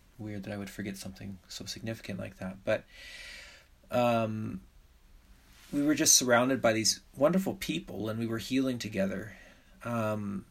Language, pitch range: English, 100-120 Hz